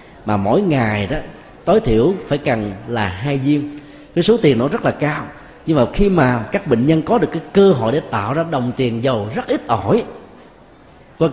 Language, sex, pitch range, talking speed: Vietnamese, male, 110-165 Hz, 210 wpm